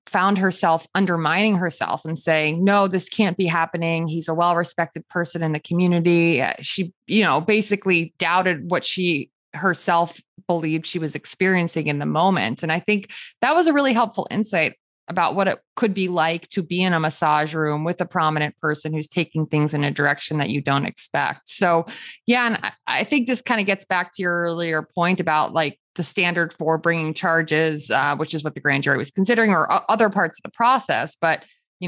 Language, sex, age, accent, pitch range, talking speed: English, female, 20-39, American, 155-190 Hz, 205 wpm